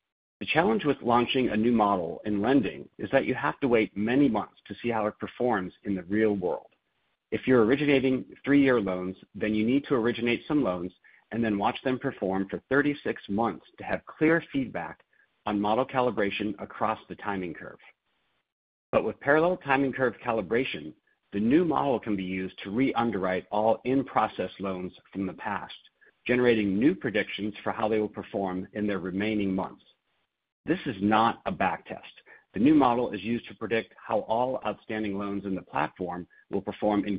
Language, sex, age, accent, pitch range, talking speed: English, male, 50-69, American, 100-125 Hz, 180 wpm